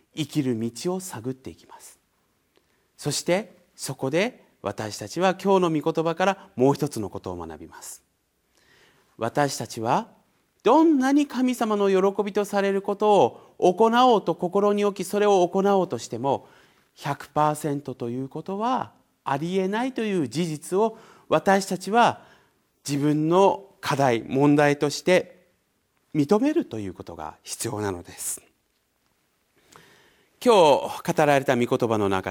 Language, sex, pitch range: Japanese, male, 140-220 Hz